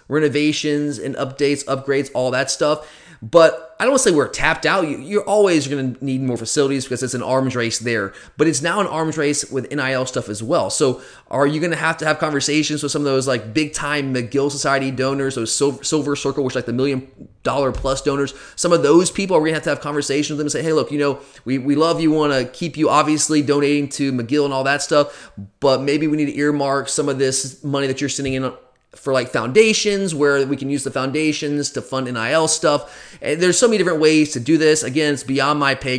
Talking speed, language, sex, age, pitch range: 250 wpm, English, male, 30-49, 130-155 Hz